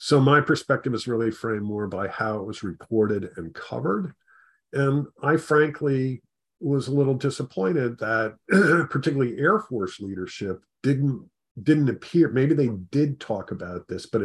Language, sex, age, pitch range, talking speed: English, male, 50-69, 95-130 Hz, 150 wpm